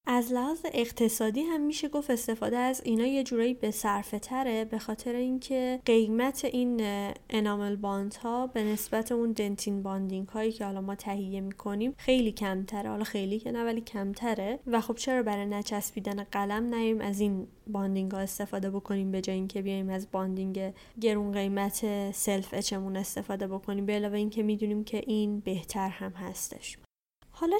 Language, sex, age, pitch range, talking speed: Persian, female, 20-39, 205-245 Hz, 165 wpm